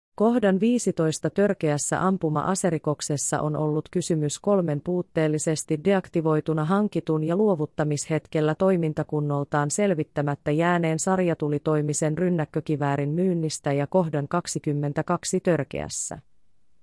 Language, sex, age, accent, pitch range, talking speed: Finnish, female, 30-49, native, 150-180 Hz, 80 wpm